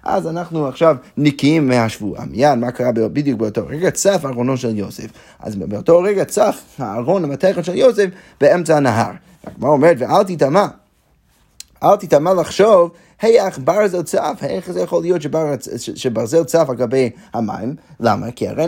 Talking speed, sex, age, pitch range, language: 175 wpm, male, 30-49, 125-180 Hz, Hebrew